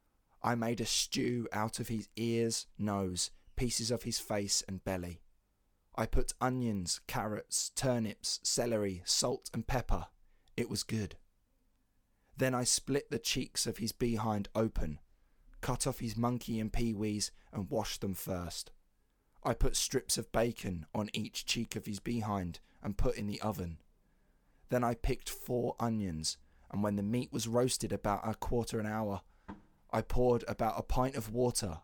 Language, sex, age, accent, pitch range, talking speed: English, male, 20-39, British, 95-115 Hz, 160 wpm